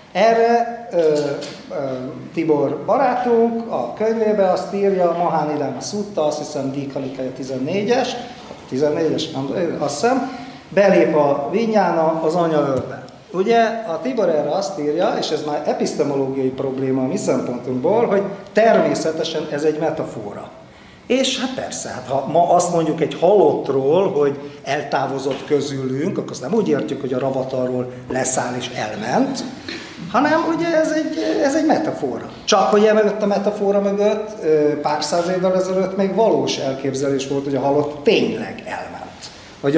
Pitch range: 135-205 Hz